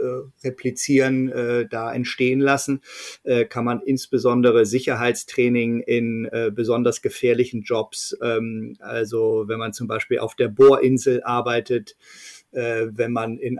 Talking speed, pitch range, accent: 105 wpm, 120-130 Hz, German